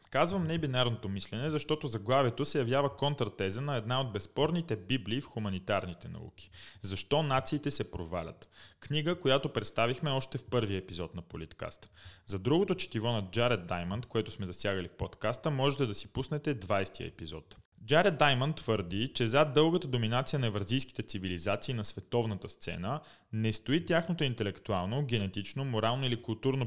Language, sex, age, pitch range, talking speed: Bulgarian, male, 30-49, 100-135 Hz, 155 wpm